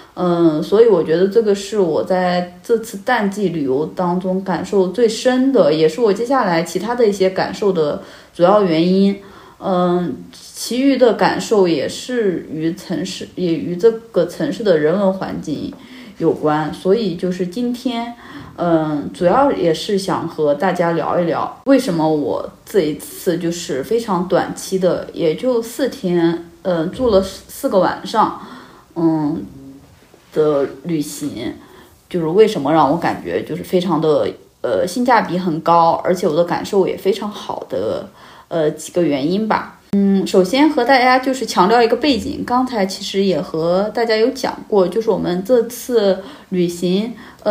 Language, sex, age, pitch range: Chinese, female, 30-49, 175-245 Hz